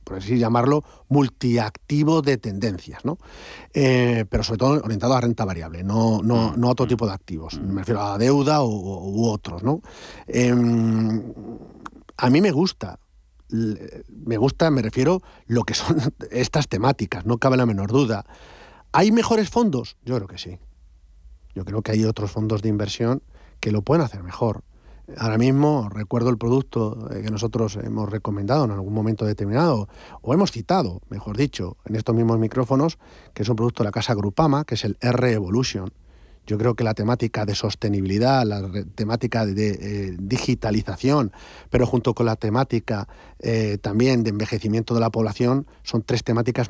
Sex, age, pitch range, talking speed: male, 40-59, 105-125 Hz, 170 wpm